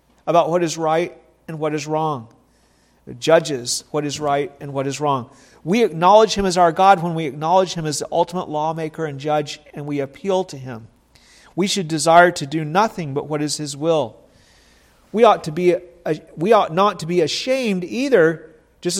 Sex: male